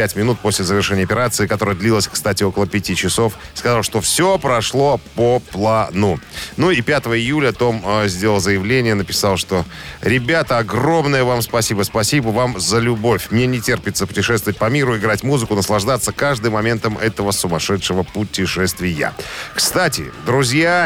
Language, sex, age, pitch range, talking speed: Russian, male, 40-59, 100-130 Hz, 145 wpm